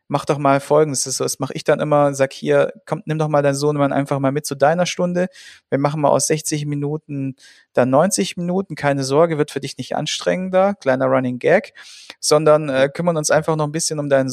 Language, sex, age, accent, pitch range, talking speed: German, male, 40-59, German, 135-155 Hz, 230 wpm